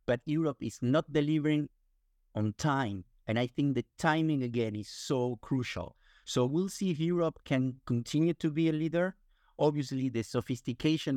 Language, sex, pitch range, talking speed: English, male, 110-140 Hz, 160 wpm